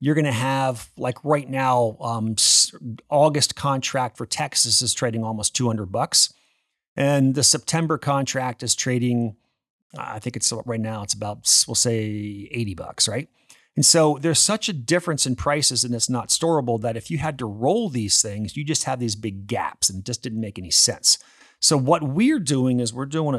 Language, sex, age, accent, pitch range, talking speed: English, male, 40-59, American, 115-145 Hz, 185 wpm